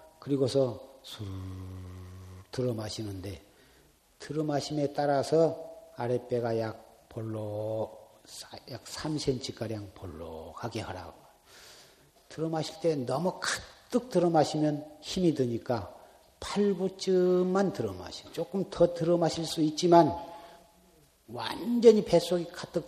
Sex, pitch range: male, 105-155 Hz